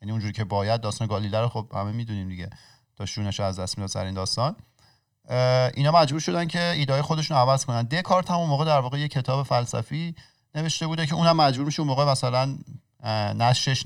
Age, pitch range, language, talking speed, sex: 40-59, 110-135 Hz, Persian, 200 wpm, male